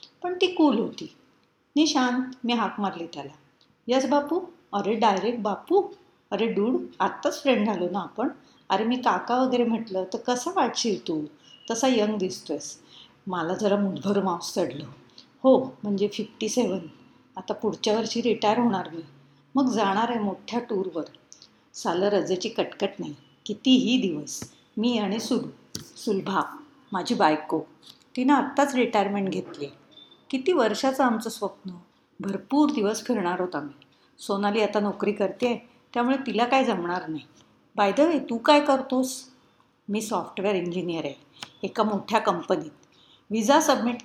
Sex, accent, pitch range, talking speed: female, native, 195-255 Hz, 140 wpm